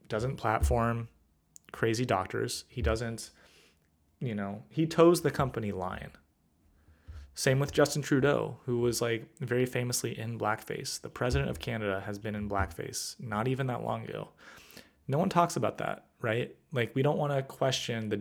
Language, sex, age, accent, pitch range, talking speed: English, male, 20-39, American, 100-135 Hz, 165 wpm